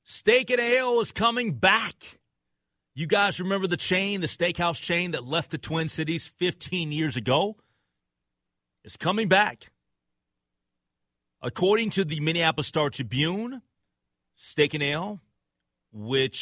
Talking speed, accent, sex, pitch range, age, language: 130 wpm, American, male, 110-160 Hz, 30-49, English